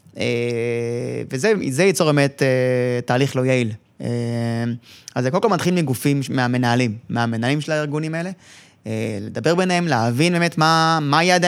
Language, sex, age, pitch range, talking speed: Hebrew, male, 20-39, 125-160 Hz, 145 wpm